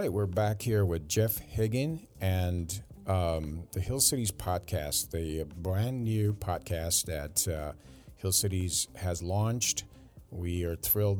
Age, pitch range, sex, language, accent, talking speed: 40-59, 80-105 Hz, male, English, American, 140 wpm